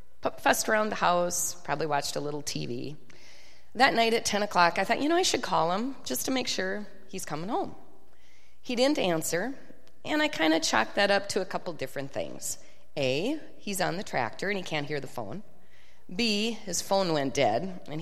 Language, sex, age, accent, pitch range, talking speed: English, female, 30-49, American, 170-235 Hz, 205 wpm